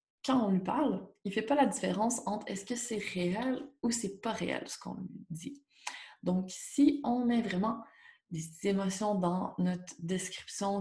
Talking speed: 185 wpm